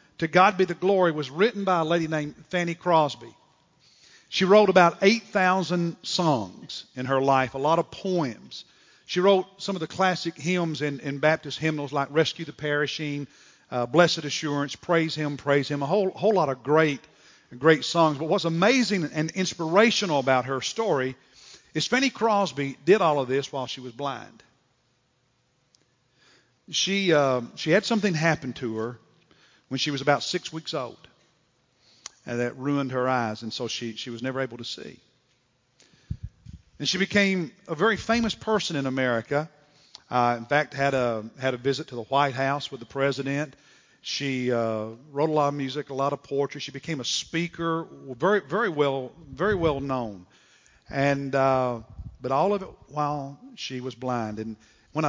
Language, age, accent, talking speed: English, 50-69, American, 175 wpm